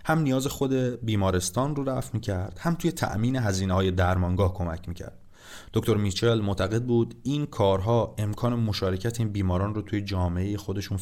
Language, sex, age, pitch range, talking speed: Persian, male, 30-49, 95-115 Hz, 160 wpm